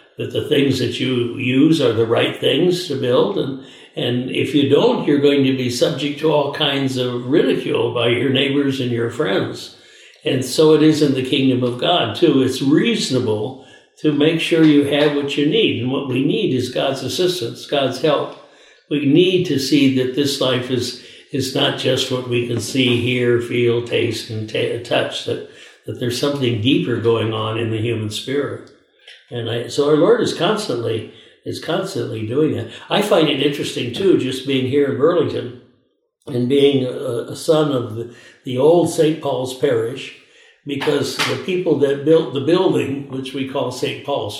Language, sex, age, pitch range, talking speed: English, male, 60-79, 120-150 Hz, 190 wpm